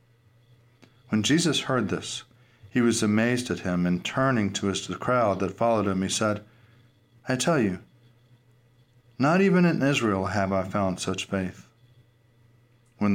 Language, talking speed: English, 145 wpm